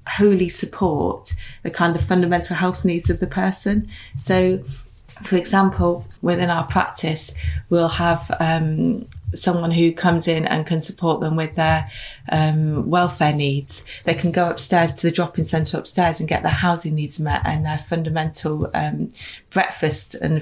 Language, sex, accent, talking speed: English, female, British, 160 wpm